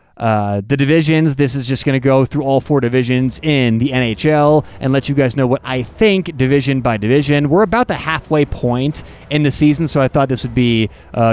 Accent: American